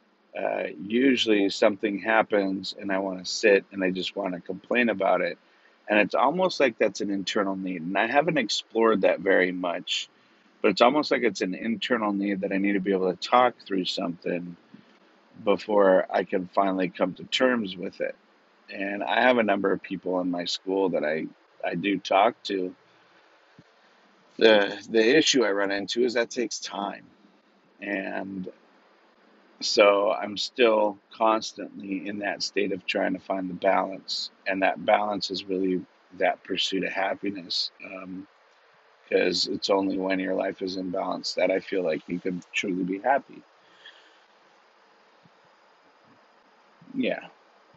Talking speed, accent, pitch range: 160 wpm, American, 95-105 Hz